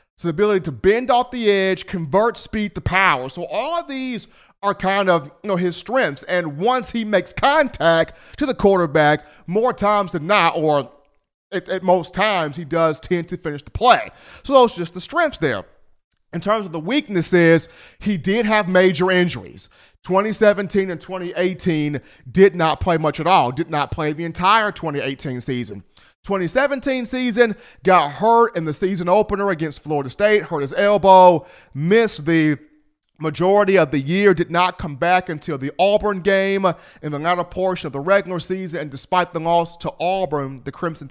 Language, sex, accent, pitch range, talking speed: English, male, American, 150-200 Hz, 180 wpm